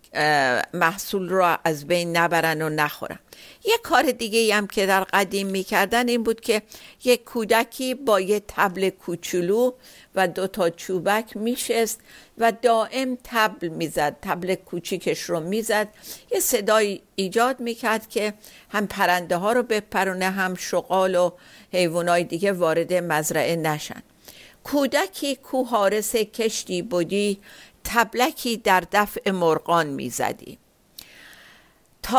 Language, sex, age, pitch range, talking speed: Persian, female, 60-79, 180-235 Hz, 120 wpm